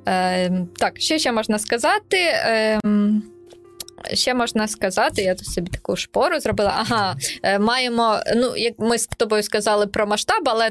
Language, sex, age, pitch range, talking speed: Ukrainian, female, 20-39, 195-240 Hz, 155 wpm